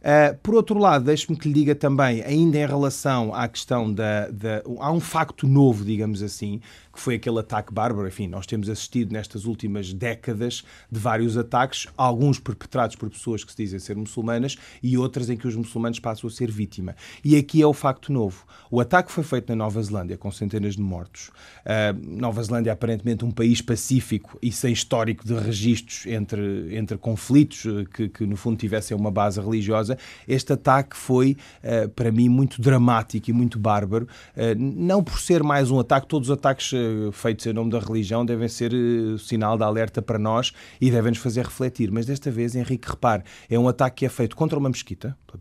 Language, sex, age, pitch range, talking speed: Portuguese, male, 30-49, 110-130 Hz, 195 wpm